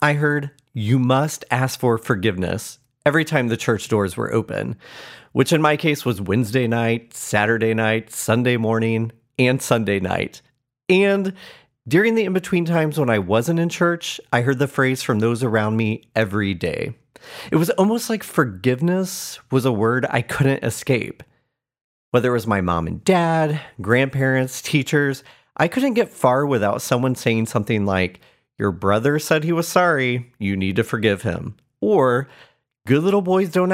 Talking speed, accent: 165 wpm, American